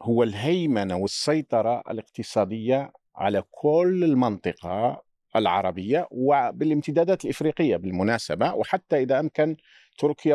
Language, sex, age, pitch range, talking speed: Arabic, male, 50-69, 125-185 Hz, 85 wpm